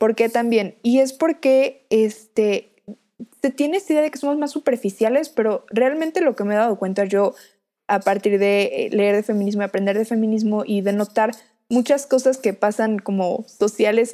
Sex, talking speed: female, 180 wpm